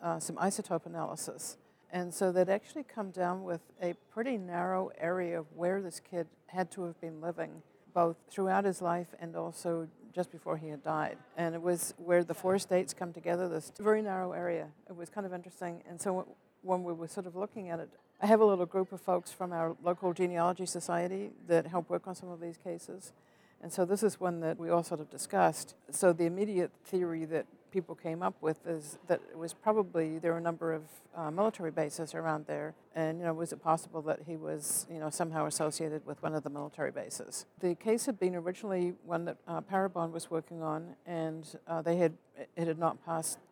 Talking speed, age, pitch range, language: 215 wpm, 60-79, 165-185 Hz, English